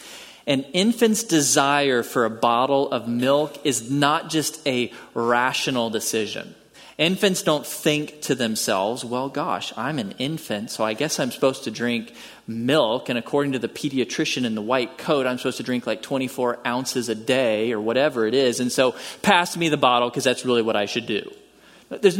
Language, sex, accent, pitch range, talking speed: English, male, American, 130-180 Hz, 185 wpm